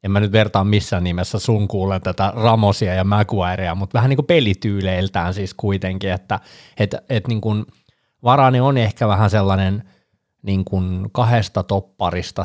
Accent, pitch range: native, 95-120 Hz